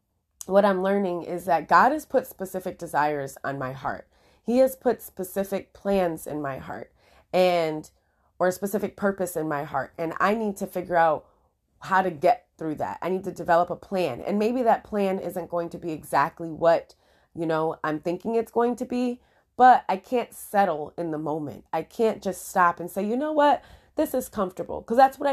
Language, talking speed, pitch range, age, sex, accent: English, 205 wpm, 165-200 Hz, 20-39, female, American